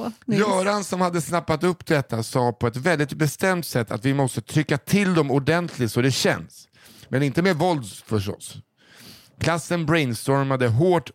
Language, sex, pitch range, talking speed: English, male, 115-155 Hz, 155 wpm